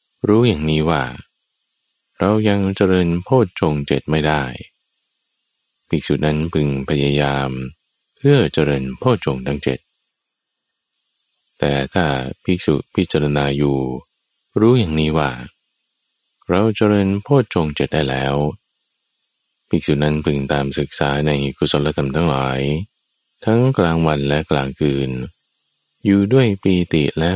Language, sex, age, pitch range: Thai, male, 20-39, 70-90 Hz